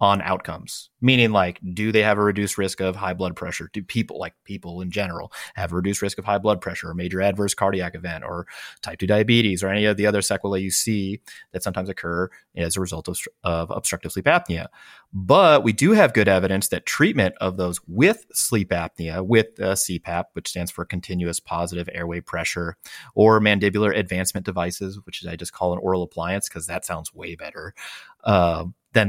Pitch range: 90-110 Hz